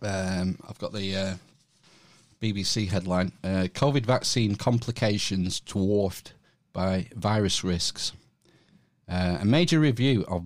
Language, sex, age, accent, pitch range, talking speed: English, male, 40-59, British, 95-110 Hz, 115 wpm